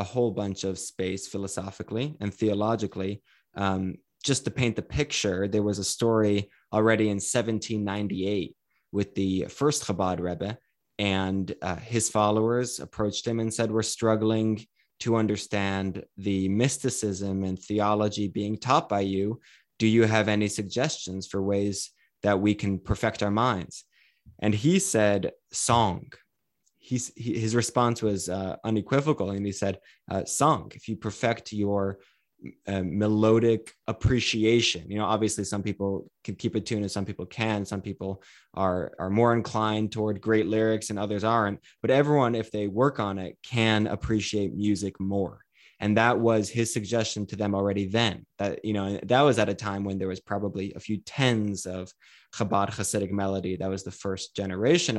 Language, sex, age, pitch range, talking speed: English, male, 20-39, 100-110 Hz, 165 wpm